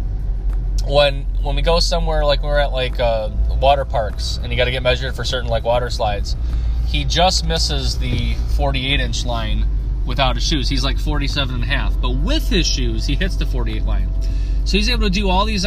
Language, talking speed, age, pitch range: English, 210 wpm, 20-39, 90-145 Hz